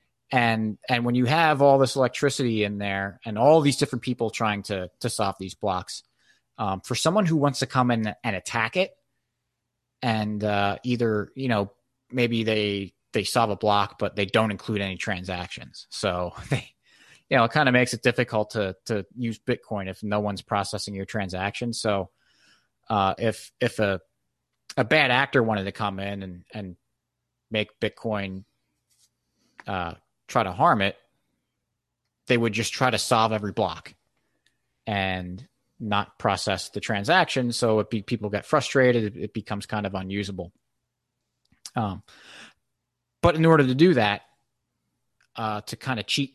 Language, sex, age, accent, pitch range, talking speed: English, male, 30-49, American, 100-125 Hz, 165 wpm